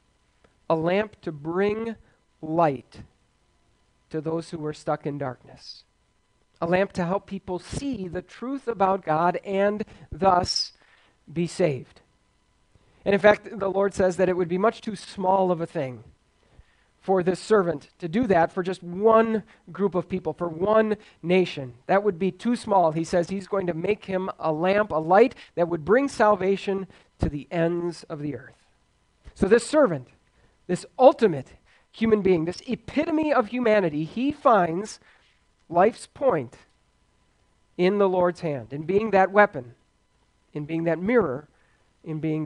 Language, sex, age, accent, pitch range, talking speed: English, male, 40-59, American, 155-200 Hz, 160 wpm